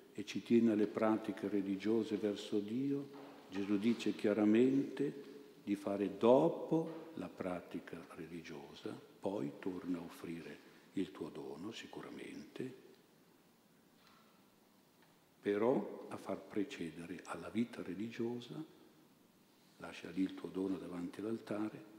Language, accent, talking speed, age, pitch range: Italian, native, 105 wpm, 60-79, 95-115 Hz